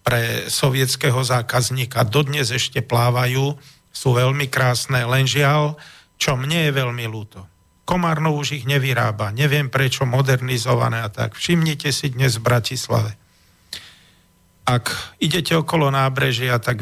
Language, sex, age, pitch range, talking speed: Slovak, male, 50-69, 115-140 Hz, 125 wpm